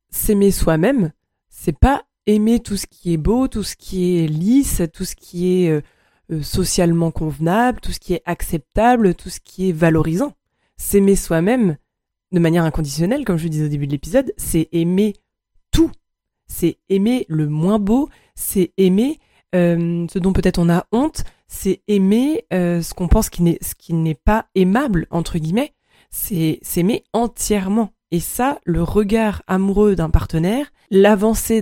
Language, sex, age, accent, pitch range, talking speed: French, female, 20-39, French, 165-205 Hz, 165 wpm